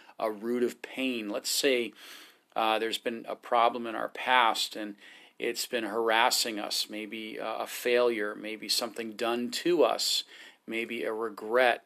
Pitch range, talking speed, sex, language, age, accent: 110-130 Hz, 155 wpm, male, English, 40-59, American